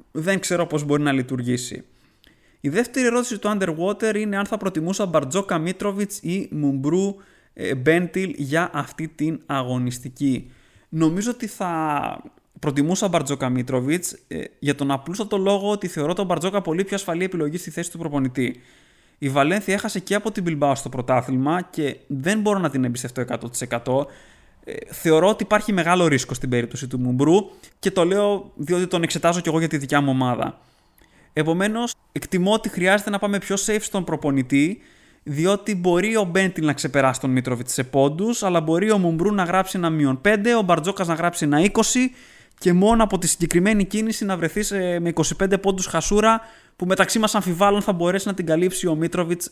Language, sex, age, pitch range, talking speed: Greek, male, 20-39, 145-200 Hz, 170 wpm